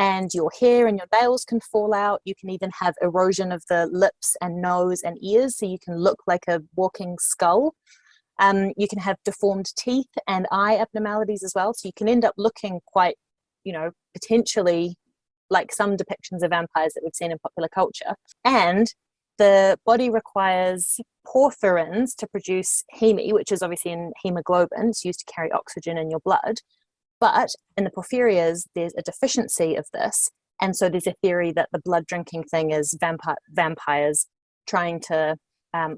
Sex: female